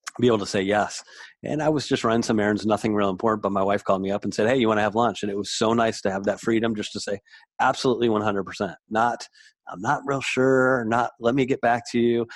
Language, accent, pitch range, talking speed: English, American, 100-120 Hz, 265 wpm